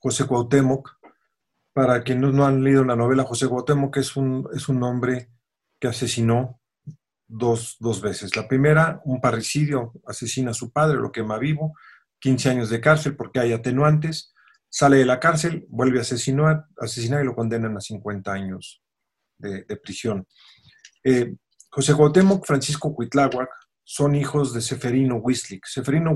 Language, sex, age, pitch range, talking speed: Spanish, male, 40-59, 120-140 Hz, 155 wpm